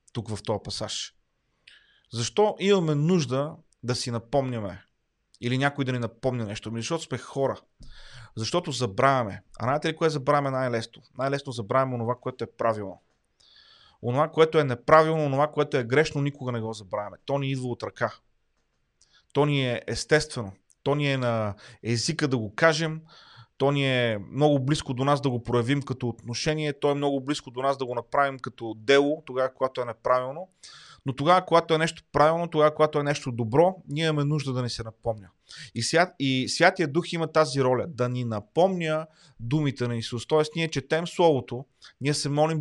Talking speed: 175 wpm